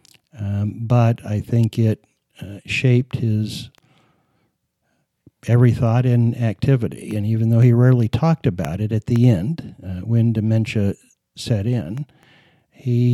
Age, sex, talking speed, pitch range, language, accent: 60-79, male, 130 wpm, 105-130 Hz, English, American